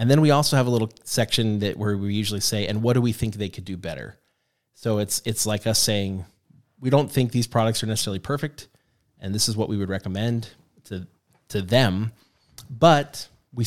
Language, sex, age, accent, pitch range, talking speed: English, male, 20-39, American, 105-130 Hz, 210 wpm